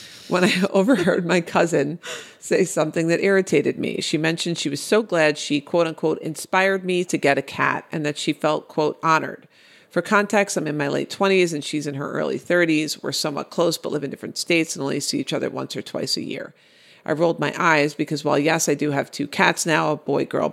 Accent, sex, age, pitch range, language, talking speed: American, female, 40-59, 145-180 Hz, English, 230 wpm